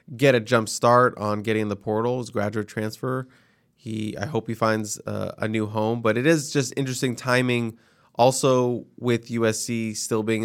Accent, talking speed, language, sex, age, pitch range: American, 185 wpm, English, male, 20-39, 105-120 Hz